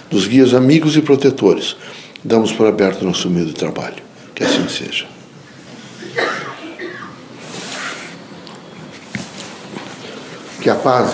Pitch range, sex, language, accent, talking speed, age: 115-155 Hz, male, Portuguese, Brazilian, 90 wpm, 60-79